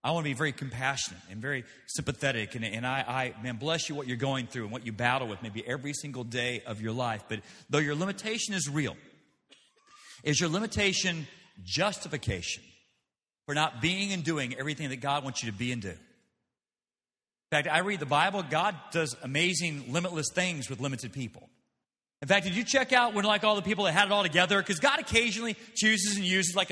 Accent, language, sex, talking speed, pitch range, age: American, English, male, 210 wpm, 145-210 Hz, 40-59